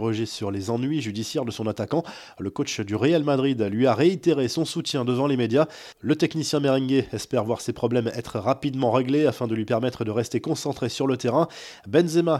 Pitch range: 115-150 Hz